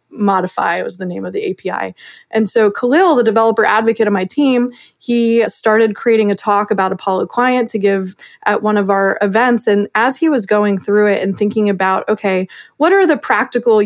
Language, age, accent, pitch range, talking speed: English, 20-39, American, 205-240 Hz, 200 wpm